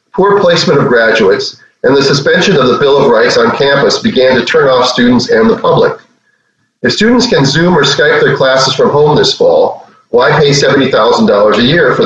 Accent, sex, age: American, male, 40-59